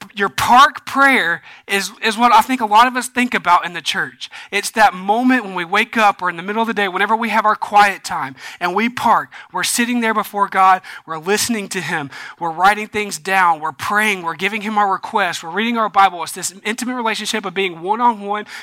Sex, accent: male, American